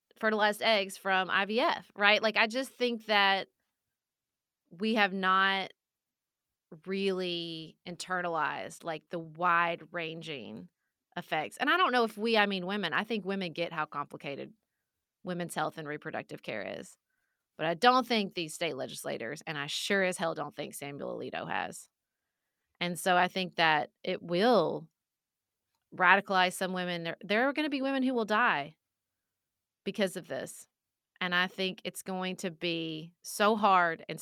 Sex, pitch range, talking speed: female, 170-210 Hz, 160 wpm